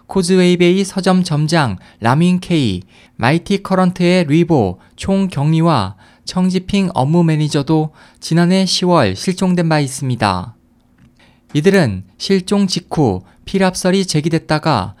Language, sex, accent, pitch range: Korean, male, native, 130-185 Hz